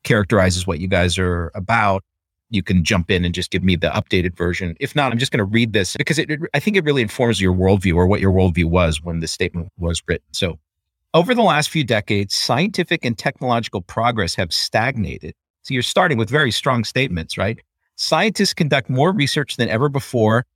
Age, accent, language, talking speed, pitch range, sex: 50-69, American, English, 210 wpm, 95-135 Hz, male